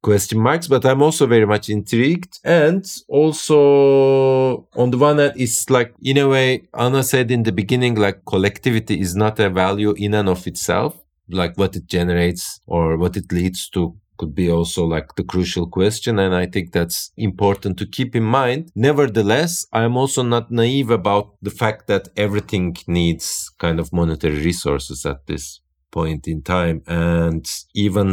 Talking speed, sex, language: 175 wpm, male, English